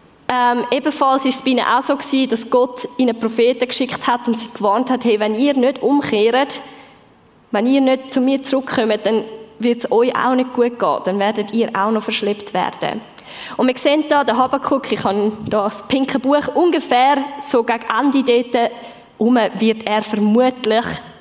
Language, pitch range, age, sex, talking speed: German, 220-275 Hz, 20-39, female, 185 wpm